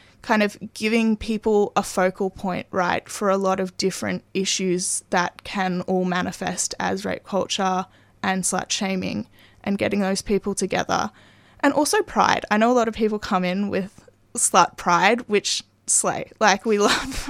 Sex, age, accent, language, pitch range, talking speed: female, 20-39, Australian, English, 190-225 Hz, 165 wpm